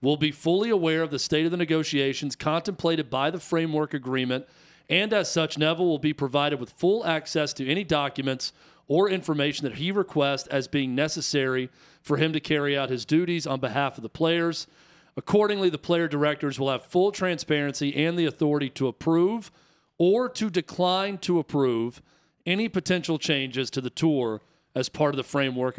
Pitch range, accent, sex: 140-170 Hz, American, male